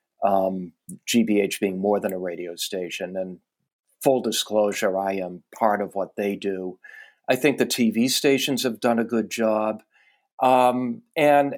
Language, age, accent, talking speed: English, 50-69, American, 155 wpm